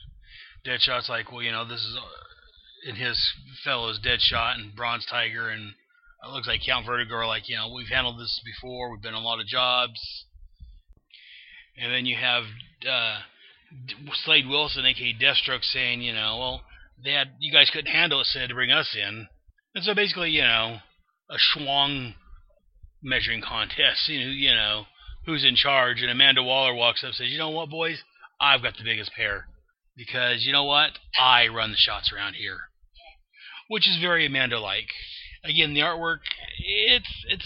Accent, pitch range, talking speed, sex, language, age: American, 110-145 Hz, 180 wpm, male, English, 30-49